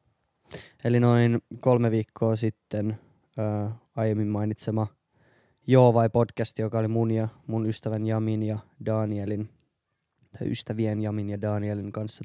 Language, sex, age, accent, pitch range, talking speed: Finnish, male, 20-39, native, 110-130 Hz, 120 wpm